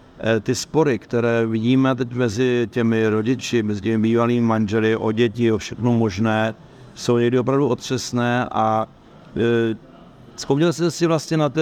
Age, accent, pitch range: 50-69, native, 115-125 Hz